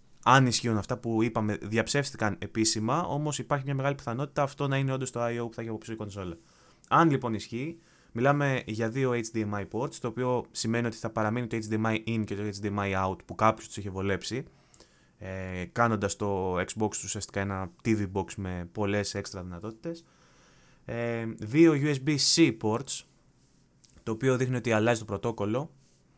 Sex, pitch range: male, 105-130 Hz